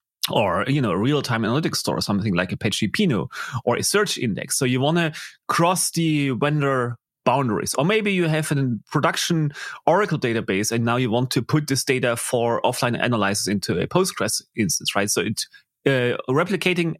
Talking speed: 180 wpm